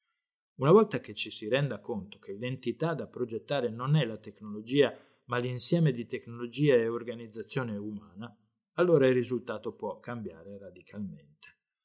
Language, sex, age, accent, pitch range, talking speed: Italian, male, 20-39, native, 110-140 Hz, 140 wpm